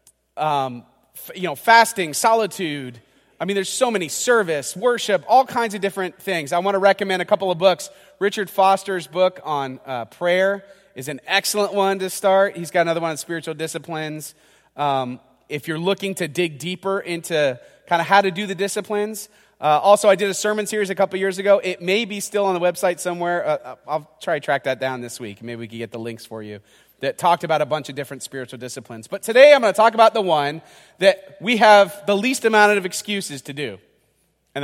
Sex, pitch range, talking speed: male, 135-200 Hz, 215 wpm